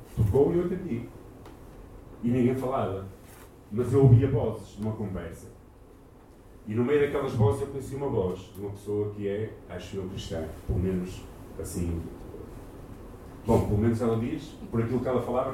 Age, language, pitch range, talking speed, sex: 40-59, Portuguese, 105-140 Hz, 165 wpm, male